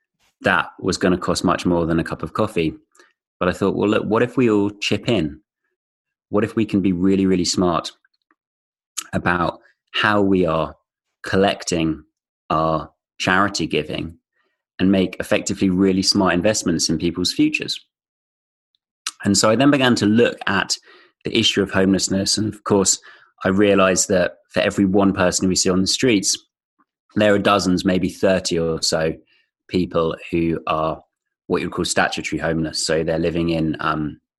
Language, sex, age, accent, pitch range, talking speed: English, male, 30-49, British, 80-100 Hz, 165 wpm